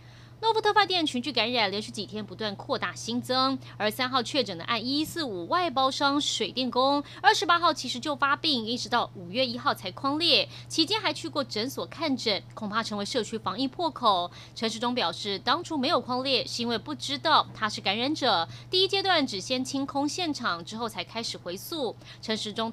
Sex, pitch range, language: female, 220-305 Hz, Chinese